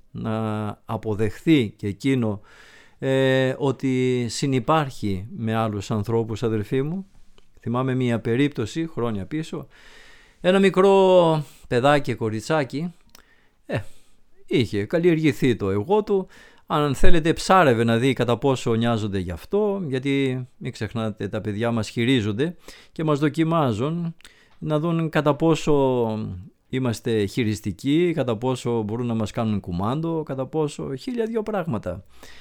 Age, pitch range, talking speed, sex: 50-69, 115-175 Hz, 115 wpm, male